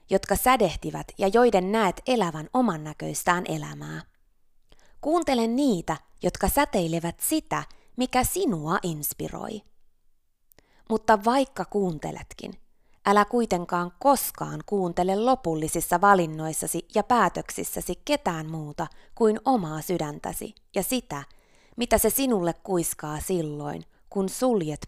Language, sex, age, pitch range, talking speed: Finnish, female, 20-39, 155-225 Hz, 100 wpm